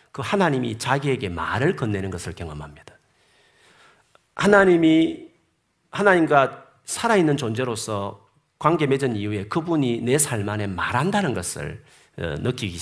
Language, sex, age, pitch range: Korean, male, 40-59, 105-140 Hz